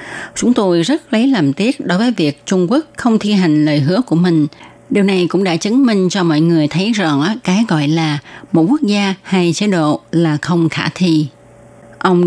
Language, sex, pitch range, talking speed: Vietnamese, female, 155-190 Hz, 210 wpm